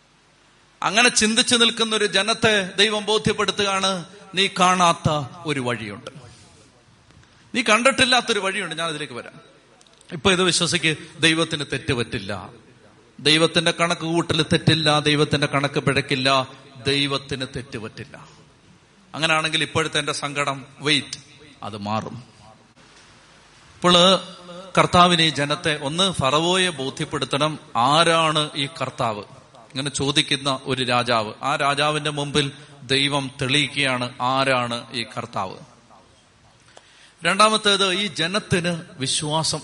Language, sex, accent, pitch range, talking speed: Malayalam, male, native, 135-175 Hz, 95 wpm